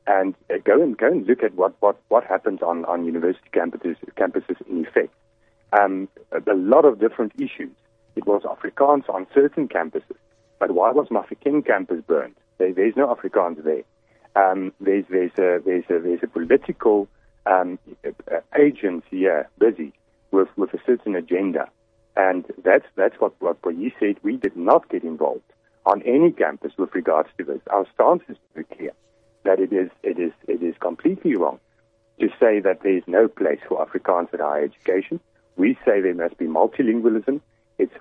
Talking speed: 180 wpm